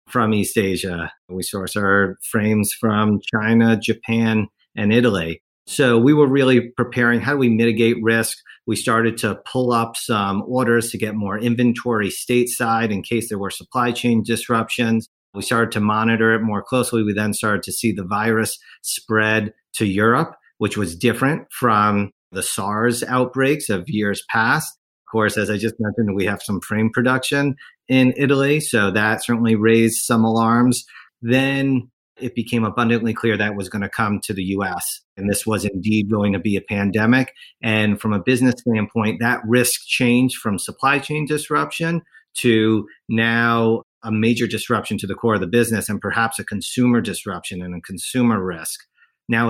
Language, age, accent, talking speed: English, 40-59, American, 170 wpm